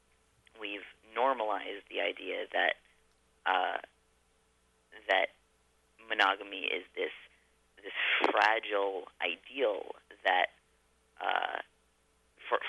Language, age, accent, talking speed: English, 30-49, American, 70 wpm